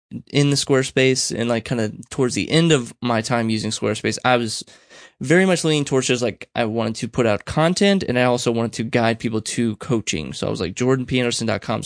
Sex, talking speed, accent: male, 220 wpm, American